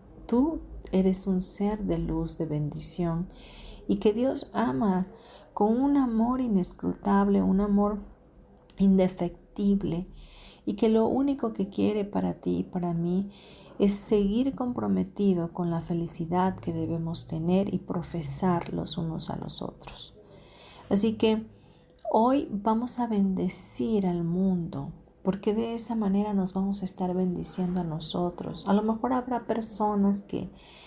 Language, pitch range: Spanish, 170-215 Hz